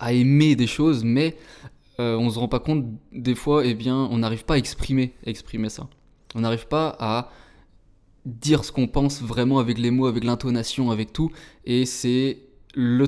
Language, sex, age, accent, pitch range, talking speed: French, male, 20-39, French, 115-135 Hz, 195 wpm